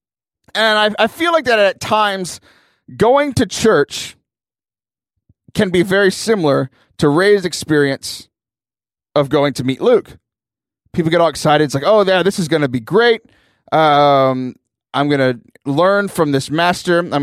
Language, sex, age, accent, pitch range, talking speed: English, male, 20-39, American, 135-200 Hz, 160 wpm